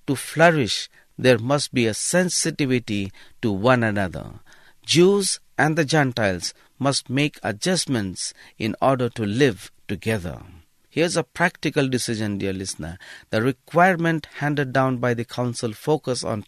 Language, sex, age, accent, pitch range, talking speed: English, male, 50-69, Indian, 110-150 Hz, 135 wpm